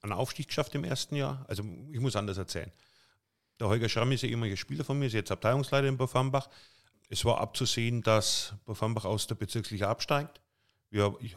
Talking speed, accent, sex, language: 195 wpm, German, male, German